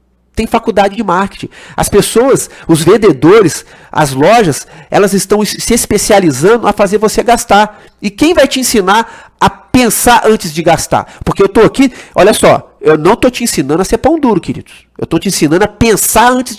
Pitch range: 165-235 Hz